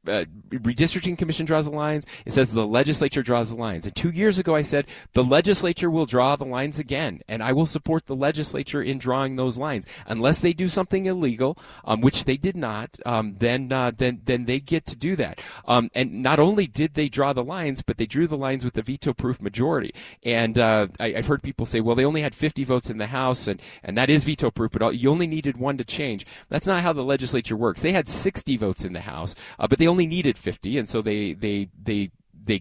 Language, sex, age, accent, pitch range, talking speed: English, male, 30-49, American, 115-150 Hz, 240 wpm